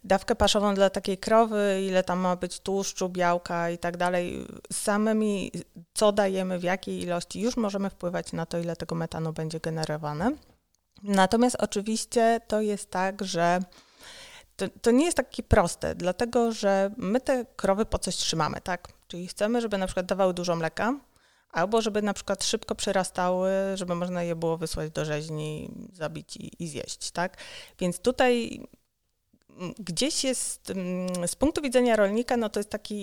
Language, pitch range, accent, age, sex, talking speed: Polish, 175-220 Hz, native, 30-49, female, 160 wpm